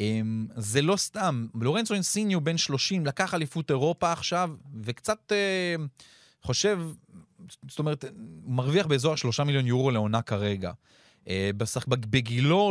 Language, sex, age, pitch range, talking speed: Hebrew, male, 30-49, 115-160 Hz, 115 wpm